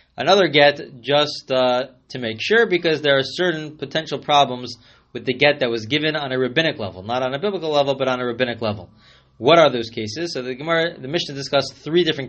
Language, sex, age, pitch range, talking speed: English, male, 20-39, 115-145 Hz, 220 wpm